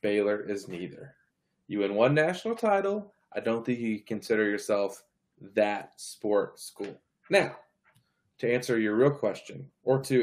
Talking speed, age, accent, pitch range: 145 wpm, 20-39, American, 110-150 Hz